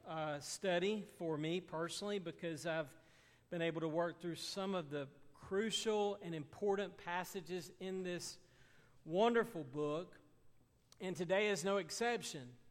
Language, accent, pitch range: English, American, 150-185 Hz